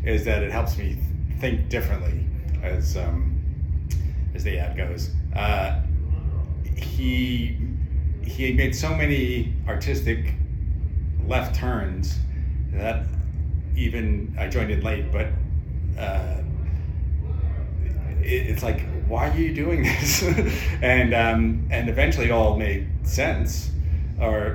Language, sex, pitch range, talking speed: English, male, 75-80 Hz, 115 wpm